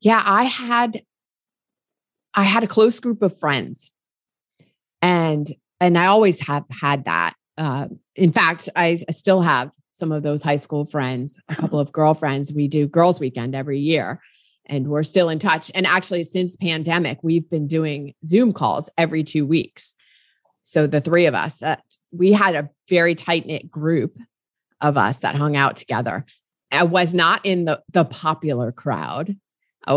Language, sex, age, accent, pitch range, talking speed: English, female, 30-49, American, 145-185 Hz, 170 wpm